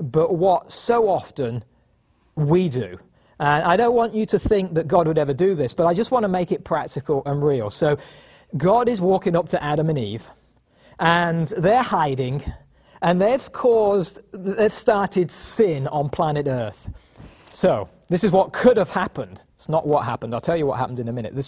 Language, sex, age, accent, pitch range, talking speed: English, male, 40-59, British, 155-230 Hz, 195 wpm